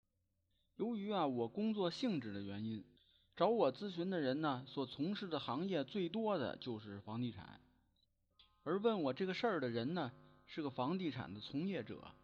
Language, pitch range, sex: Chinese, 115-190 Hz, male